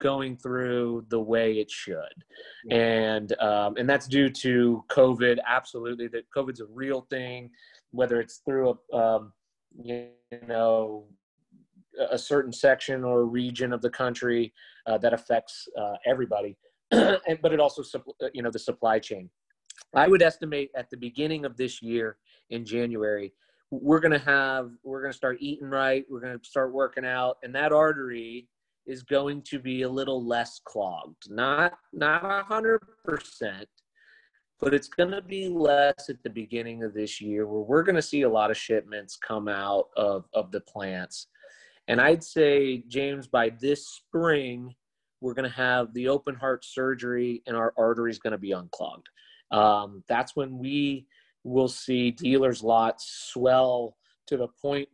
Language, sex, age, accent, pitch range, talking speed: English, male, 30-49, American, 115-140 Hz, 165 wpm